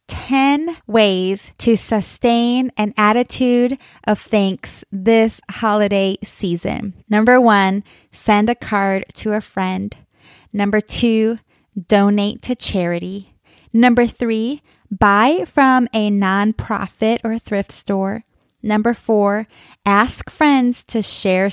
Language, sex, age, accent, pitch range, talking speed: English, female, 20-39, American, 200-245 Hz, 110 wpm